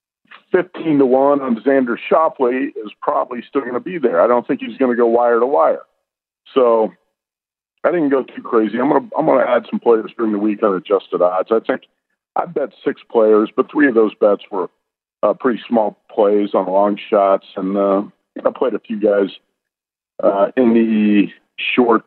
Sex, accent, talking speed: male, American, 200 wpm